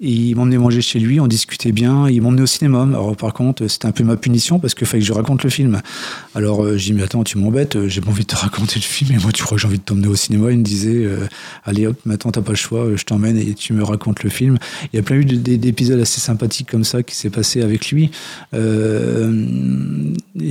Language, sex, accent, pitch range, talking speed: French, male, French, 110-135 Hz, 270 wpm